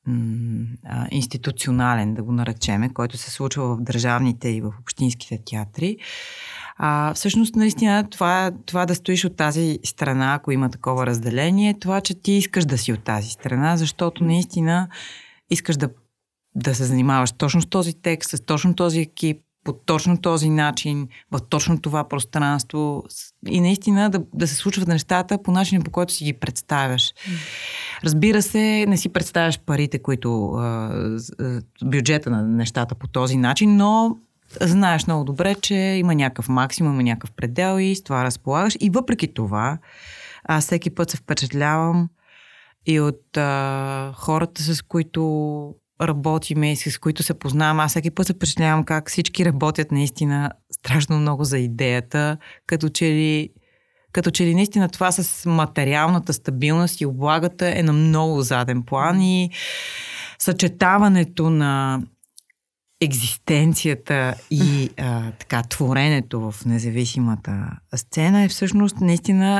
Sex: female